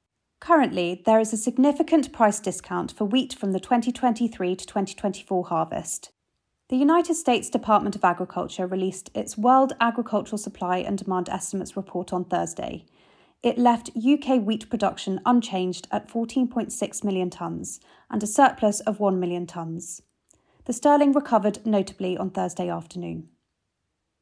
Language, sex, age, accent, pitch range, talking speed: English, female, 30-49, British, 185-245 Hz, 140 wpm